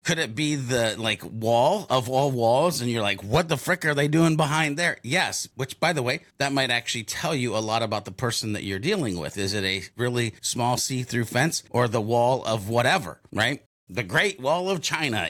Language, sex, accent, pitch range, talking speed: English, male, American, 110-140 Hz, 225 wpm